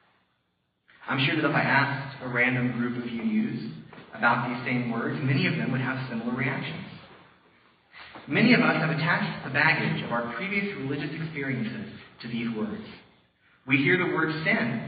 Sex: male